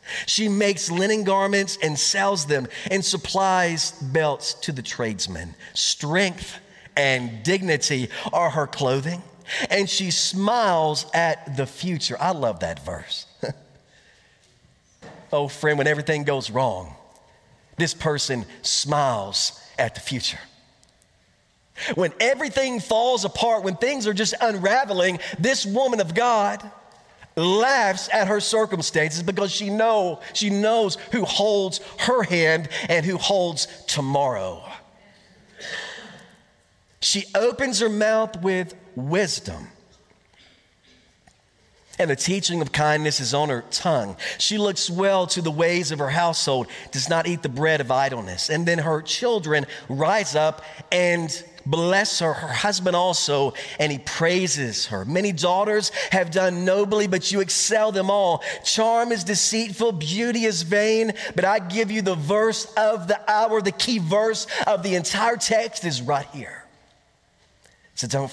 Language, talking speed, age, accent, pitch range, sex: English, 135 wpm, 40-59, American, 150-205 Hz, male